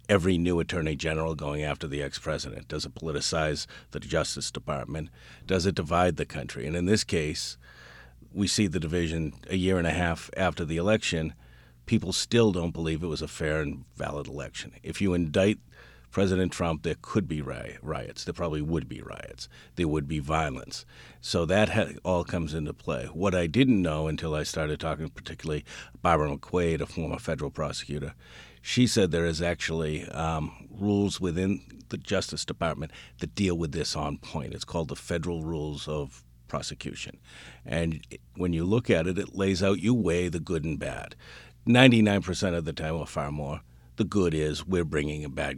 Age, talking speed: 50-69, 185 wpm